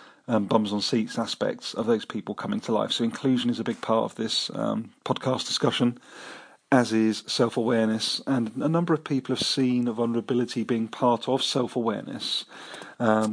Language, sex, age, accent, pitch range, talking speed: English, male, 40-59, British, 115-130 Hz, 185 wpm